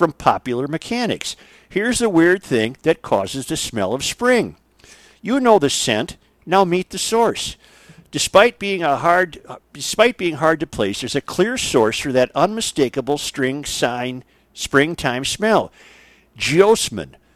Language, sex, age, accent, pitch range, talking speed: English, male, 50-69, American, 125-175 Hz, 145 wpm